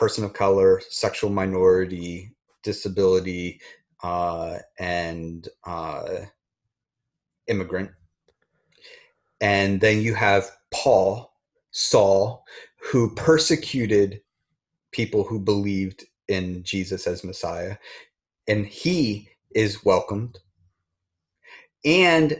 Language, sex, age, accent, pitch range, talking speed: English, male, 30-49, American, 100-145 Hz, 80 wpm